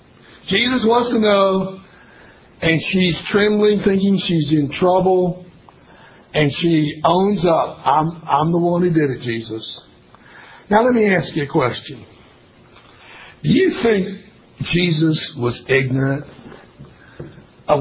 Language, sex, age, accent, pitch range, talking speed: English, male, 60-79, American, 165-215 Hz, 125 wpm